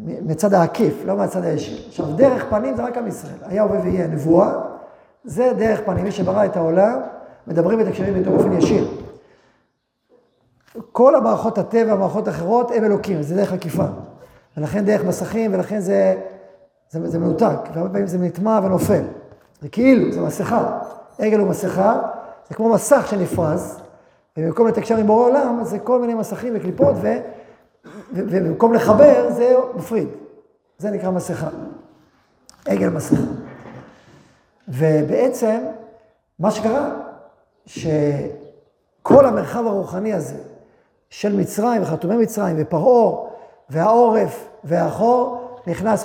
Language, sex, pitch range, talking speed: Hebrew, male, 170-225 Hz, 125 wpm